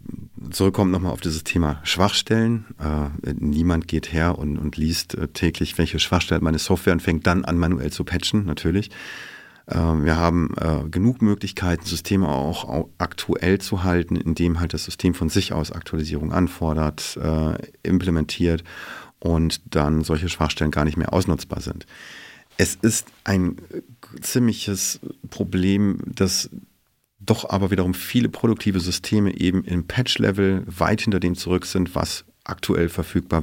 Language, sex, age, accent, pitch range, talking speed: German, male, 50-69, German, 80-100 Hz, 140 wpm